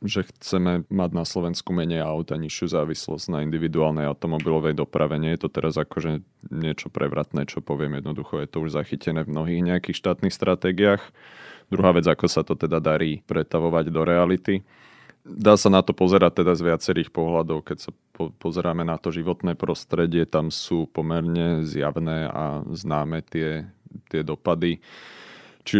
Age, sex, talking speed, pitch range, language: 30-49, male, 165 wpm, 80-95 Hz, Slovak